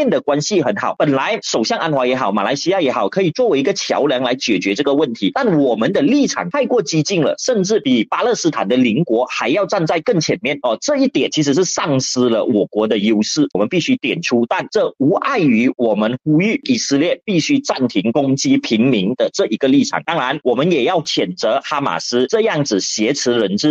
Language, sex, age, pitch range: Chinese, male, 30-49, 125-205 Hz